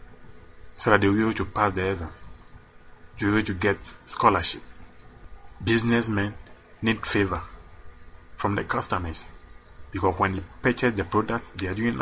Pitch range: 80-105 Hz